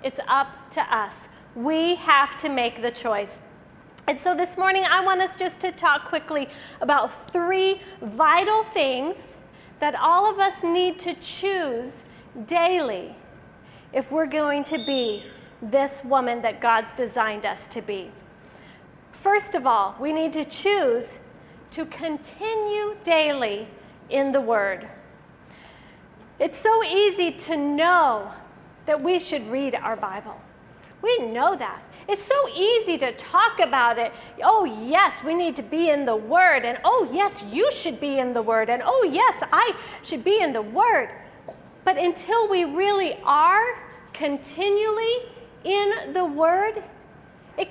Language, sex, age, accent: English, female, 40-59, American